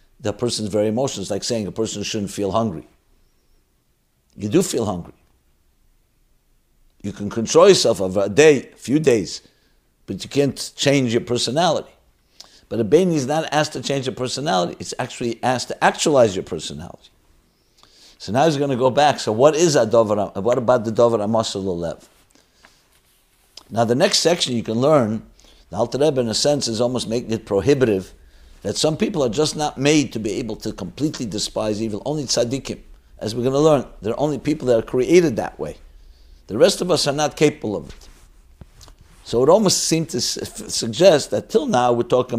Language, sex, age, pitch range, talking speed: English, male, 60-79, 105-145 Hz, 190 wpm